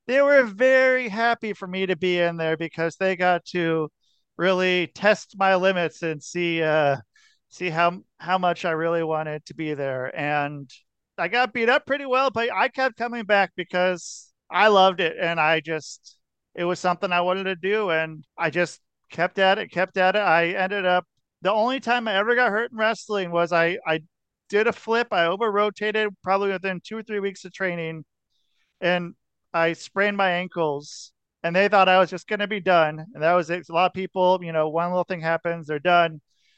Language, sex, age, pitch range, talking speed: English, male, 40-59, 165-205 Hz, 205 wpm